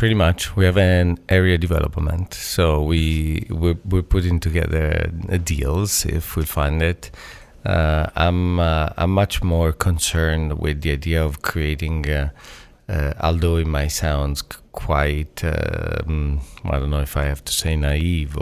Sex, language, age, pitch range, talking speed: male, English, 40-59, 75-90 Hz, 155 wpm